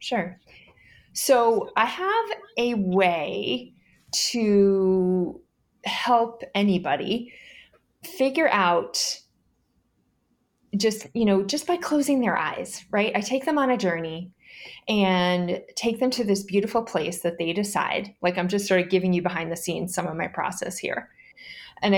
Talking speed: 140 wpm